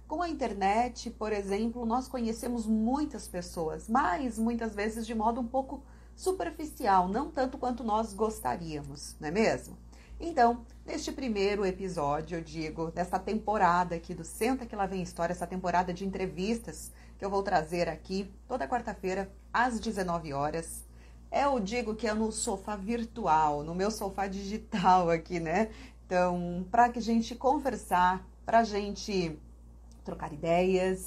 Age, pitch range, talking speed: 40-59, 175-235 Hz, 150 wpm